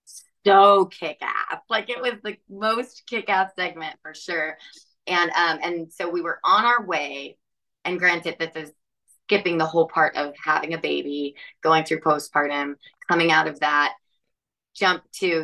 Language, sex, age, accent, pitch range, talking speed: English, female, 20-39, American, 155-195 Hz, 160 wpm